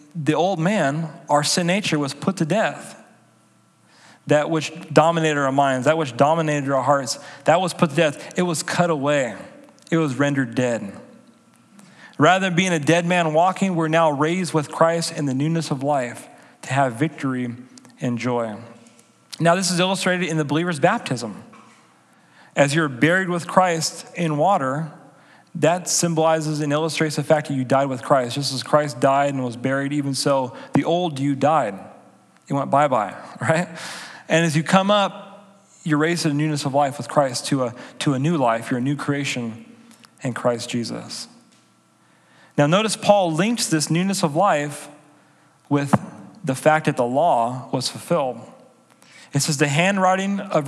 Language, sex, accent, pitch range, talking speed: English, male, American, 140-170 Hz, 175 wpm